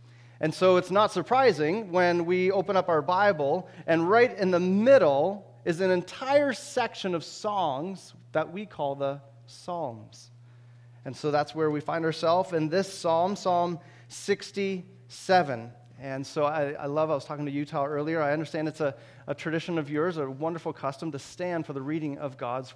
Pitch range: 120-185 Hz